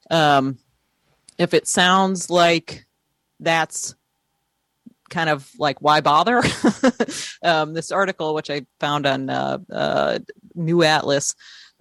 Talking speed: 115 wpm